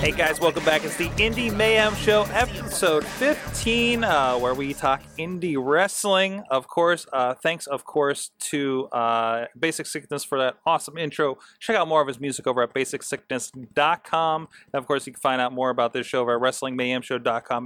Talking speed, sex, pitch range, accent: 180 wpm, male, 130-175 Hz, American